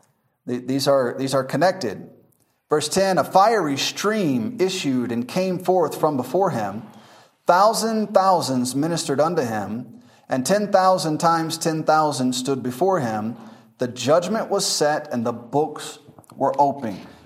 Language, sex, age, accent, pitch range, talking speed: English, male, 30-49, American, 135-190 Hz, 140 wpm